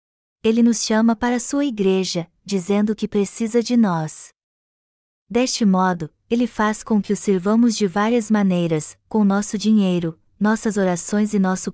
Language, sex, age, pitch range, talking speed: Portuguese, female, 20-39, 190-230 Hz, 155 wpm